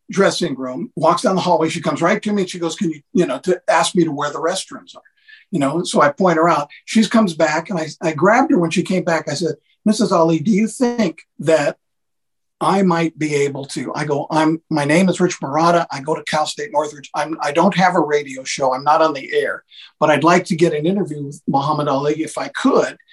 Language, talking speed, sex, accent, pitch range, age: English, 250 wpm, male, American, 155-185 Hz, 50-69